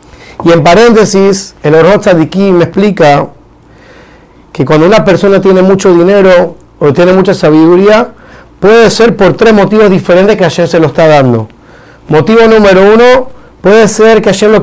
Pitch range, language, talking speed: 165-205 Hz, Spanish, 155 wpm